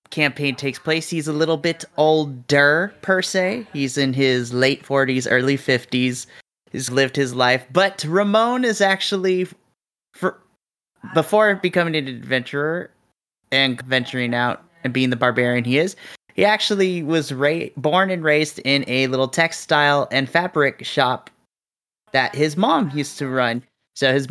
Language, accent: English, American